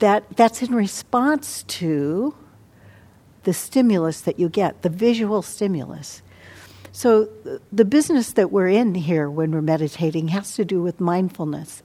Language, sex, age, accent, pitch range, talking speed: English, female, 60-79, American, 160-215 Hz, 135 wpm